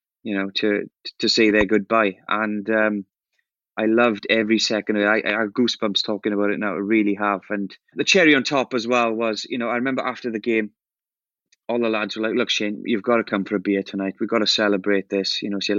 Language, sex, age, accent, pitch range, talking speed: English, male, 20-39, British, 100-115 Hz, 245 wpm